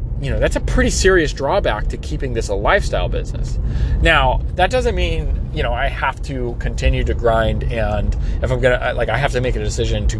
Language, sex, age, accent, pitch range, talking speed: English, male, 30-49, American, 90-145 Hz, 225 wpm